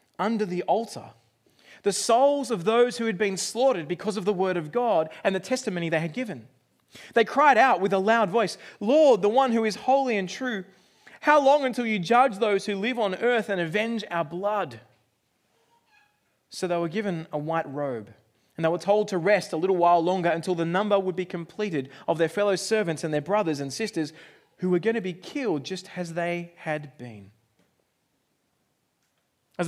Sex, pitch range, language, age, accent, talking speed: male, 175-230 Hz, English, 20-39, Australian, 195 wpm